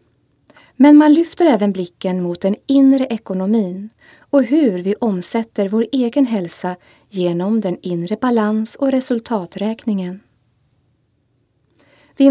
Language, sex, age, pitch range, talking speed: Swedish, female, 20-39, 185-255 Hz, 110 wpm